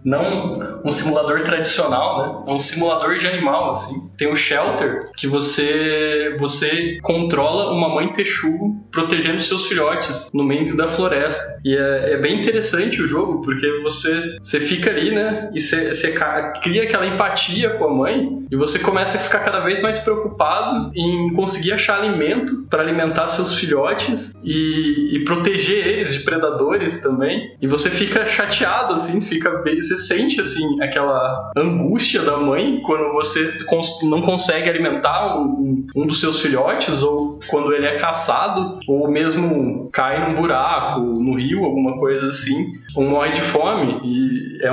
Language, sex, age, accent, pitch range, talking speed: Portuguese, male, 20-39, Brazilian, 150-195 Hz, 155 wpm